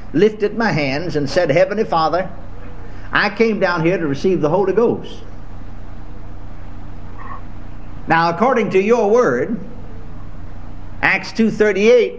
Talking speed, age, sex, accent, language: 120 wpm, 60-79, male, American, English